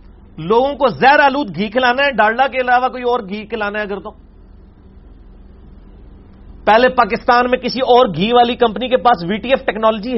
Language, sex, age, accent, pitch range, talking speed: English, male, 40-59, Indian, 160-245 Hz, 170 wpm